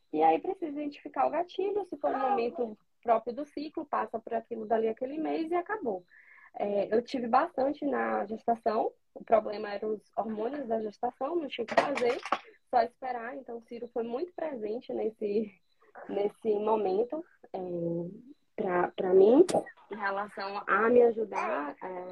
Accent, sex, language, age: Brazilian, female, Portuguese, 20-39